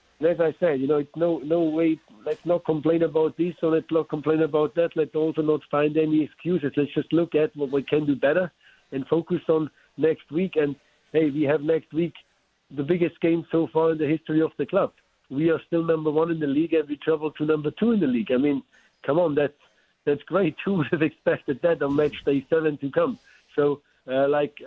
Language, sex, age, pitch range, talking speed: English, male, 60-79, 150-170 Hz, 235 wpm